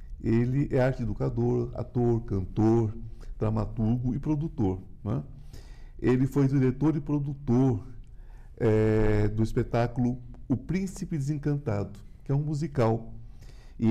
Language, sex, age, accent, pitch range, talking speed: Portuguese, male, 50-69, Brazilian, 115-145 Hz, 110 wpm